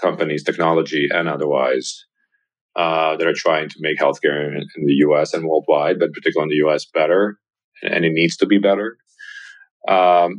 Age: 30-49